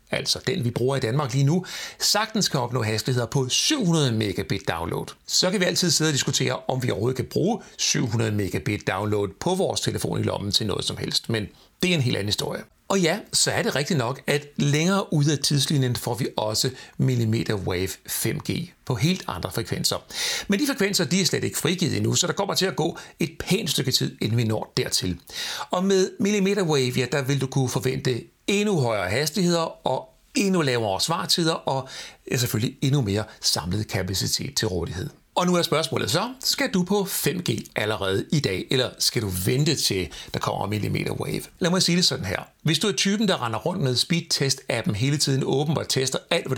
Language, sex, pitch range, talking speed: Danish, male, 120-175 Hz, 200 wpm